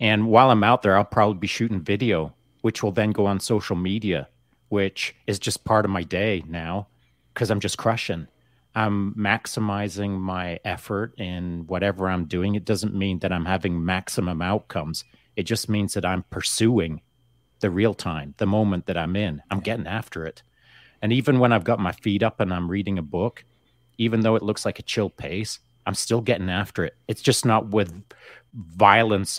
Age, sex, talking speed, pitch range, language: 40-59, male, 190 wpm, 95-115 Hz, English